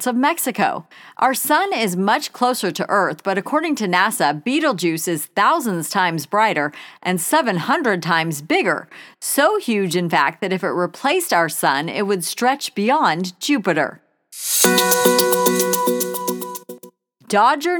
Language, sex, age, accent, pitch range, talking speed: English, female, 40-59, American, 170-240 Hz, 130 wpm